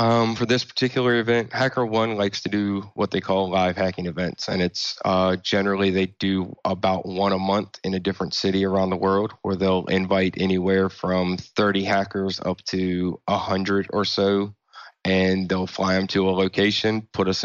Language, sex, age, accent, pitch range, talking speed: English, male, 20-39, American, 95-100 Hz, 180 wpm